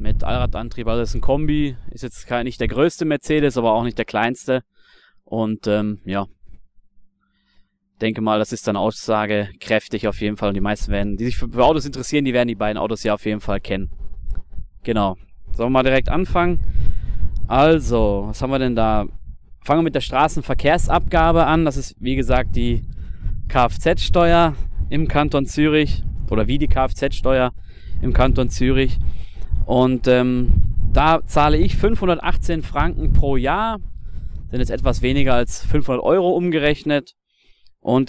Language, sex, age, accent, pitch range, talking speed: German, male, 20-39, German, 105-140 Hz, 160 wpm